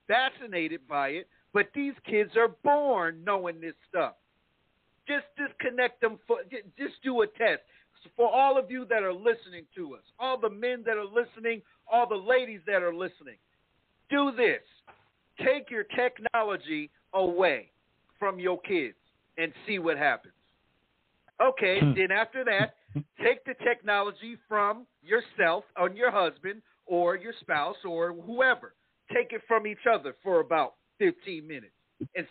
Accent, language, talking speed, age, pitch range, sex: American, English, 150 wpm, 50-69, 205-280 Hz, male